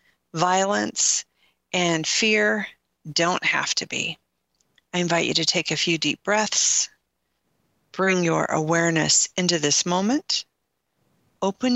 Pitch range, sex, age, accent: 160-210 Hz, female, 40-59, American